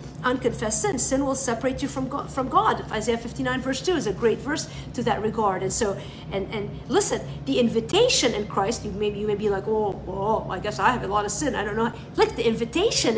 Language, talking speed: English, 235 wpm